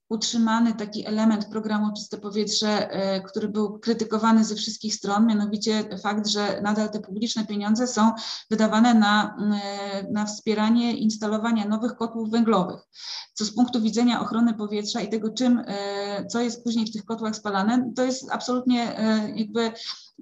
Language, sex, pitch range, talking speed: Polish, female, 205-230 Hz, 140 wpm